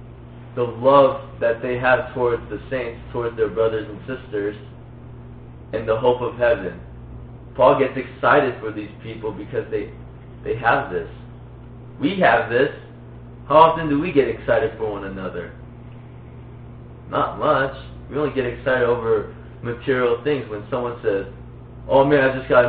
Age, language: 20-39, English